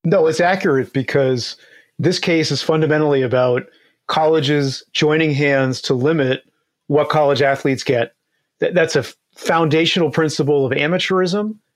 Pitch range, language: 135-160 Hz, English